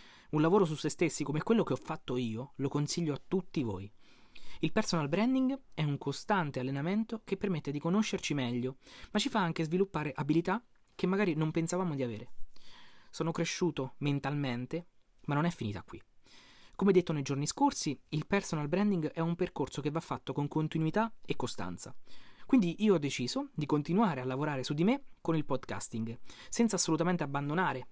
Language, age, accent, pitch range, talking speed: Italian, 20-39, native, 140-190 Hz, 180 wpm